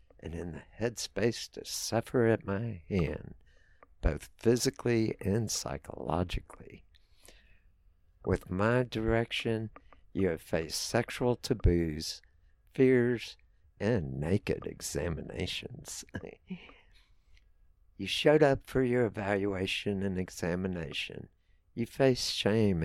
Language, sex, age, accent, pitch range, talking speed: English, male, 60-79, American, 80-115 Hz, 95 wpm